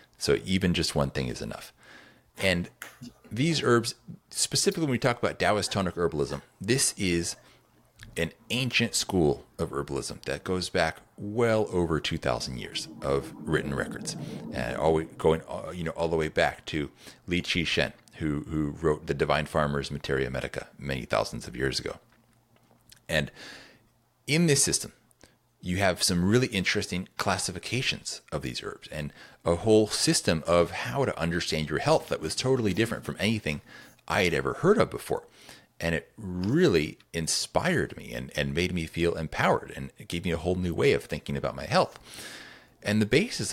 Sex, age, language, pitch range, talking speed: male, 40-59, English, 75-110 Hz, 170 wpm